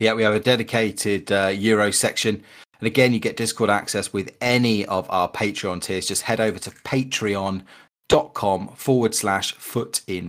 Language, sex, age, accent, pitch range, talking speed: English, male, 30-49, British, 95-110 Hz, 170 wpm